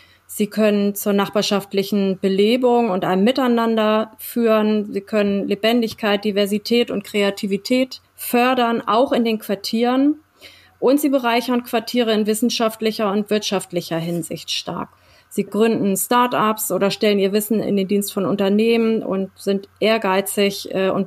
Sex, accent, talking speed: female, German, 130 wpm